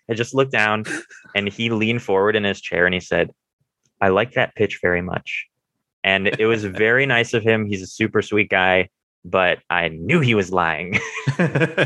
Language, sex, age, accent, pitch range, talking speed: English, male, 20-39, American, 95-125 Hz, 190 wpm